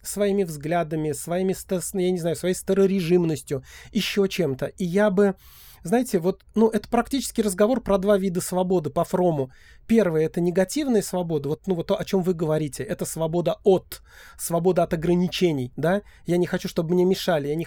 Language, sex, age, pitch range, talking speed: Russian, male, 30-49, 170-205 Hz, 175 wpm